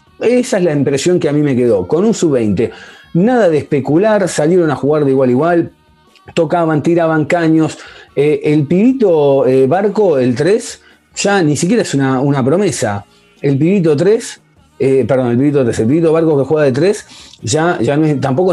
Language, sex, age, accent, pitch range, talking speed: Spanish, male, 40-59, Argentinian, 130-175 Hz, 190 wpm